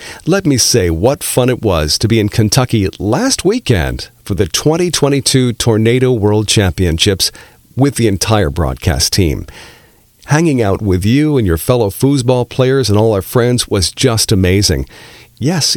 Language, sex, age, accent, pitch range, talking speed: English, male, 40-59, American, 100-135 Hz, 155 wpm